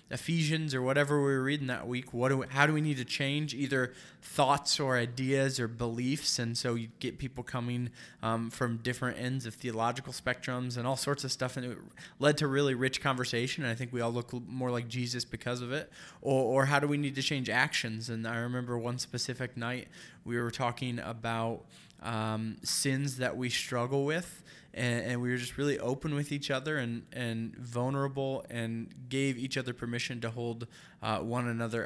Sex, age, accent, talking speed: male, 20-39, American, 205 wpm